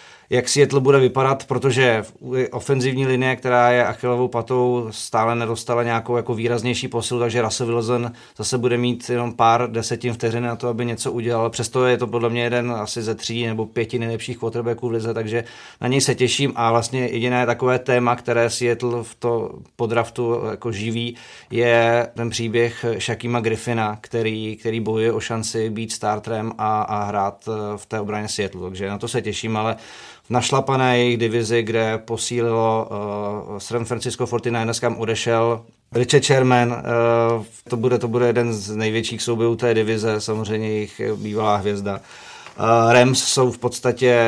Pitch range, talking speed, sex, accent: 110-120 Hz, 165 wpm, male, native